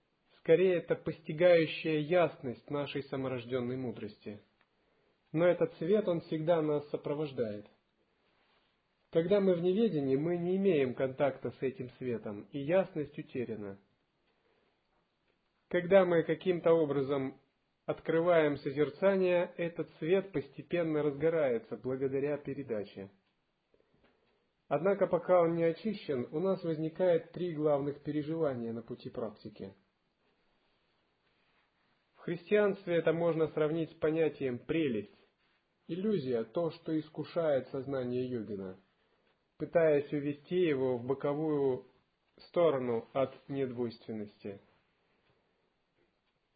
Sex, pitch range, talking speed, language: male, 135-170 Hz, 100 wpm, Russian